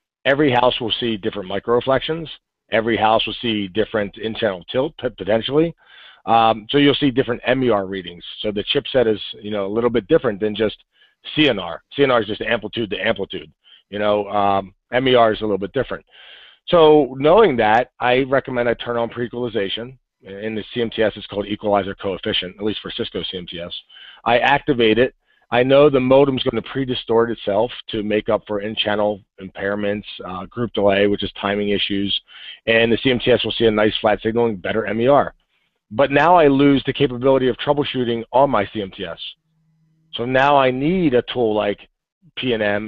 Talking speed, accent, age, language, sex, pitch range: 180 wpm, American, 40-59, English, male, 105-130 Hz